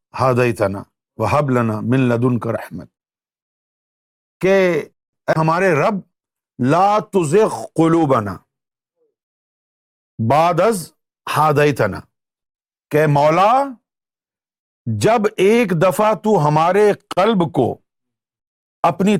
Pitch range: 125-175 Hz